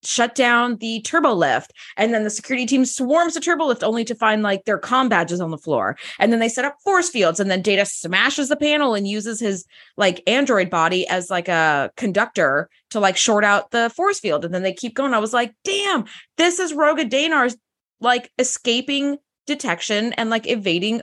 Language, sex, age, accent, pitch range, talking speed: English, female, 20-39, American, 200-295 Hz, 210 wpm